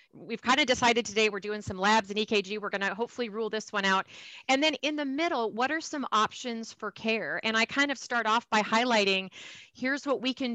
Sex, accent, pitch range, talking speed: female, American, 210-250 Hz, 240 wpm